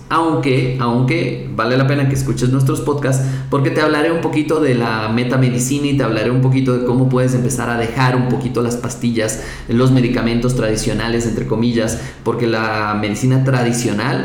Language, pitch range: Spanish, 115-140 Hz